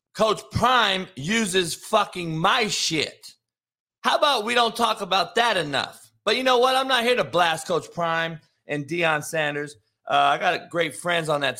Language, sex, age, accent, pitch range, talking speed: English, male, 30-49, American, 130-195 Hz, 180 wpm